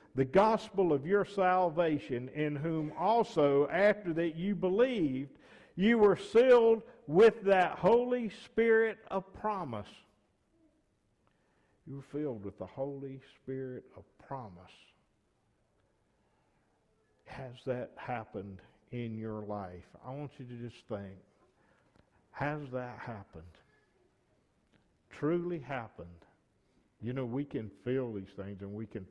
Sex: male